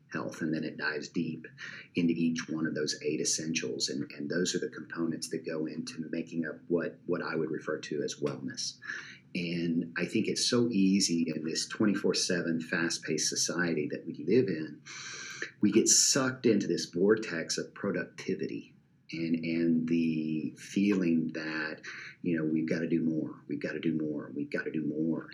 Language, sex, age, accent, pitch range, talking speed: English, male, 40-59, American, 80-90 Hz, 180 wpm